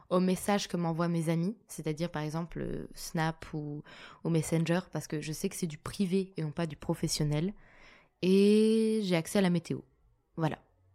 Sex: female